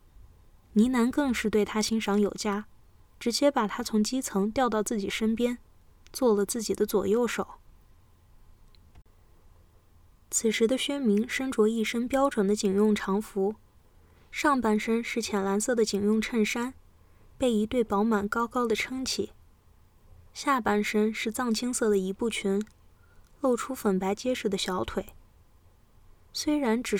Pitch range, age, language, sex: 190-235 Hz, 20-39, Chinese, female